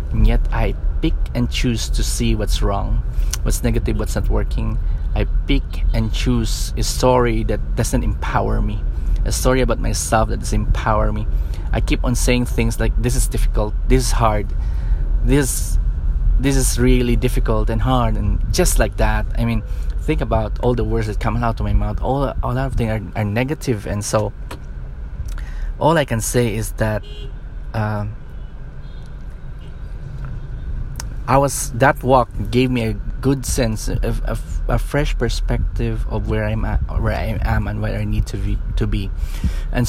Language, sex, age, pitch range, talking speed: English, male, 20-39, 100-120 Hz, 175 wpm